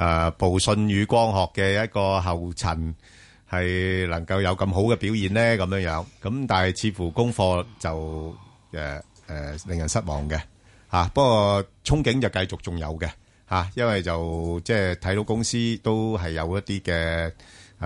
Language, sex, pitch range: Chinese, male, 85-105 Hz